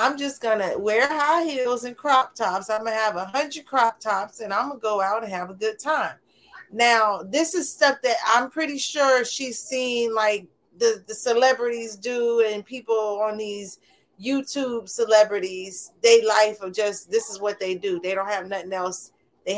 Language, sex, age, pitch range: English, female, 30-49, 210-275 Hz